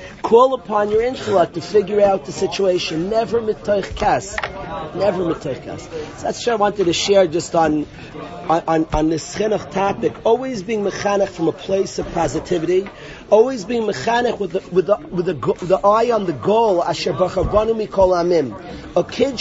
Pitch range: 180-235 Hz